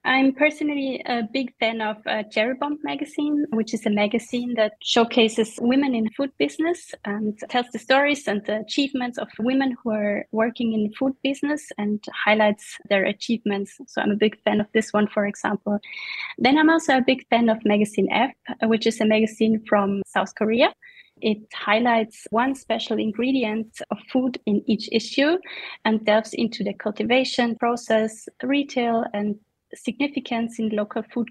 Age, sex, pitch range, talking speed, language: 20-39, female, 215-260 Hz, 165 wpm, English